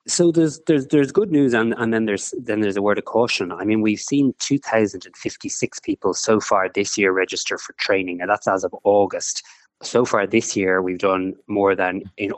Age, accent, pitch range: 20-39, Irish, 95-110 Hz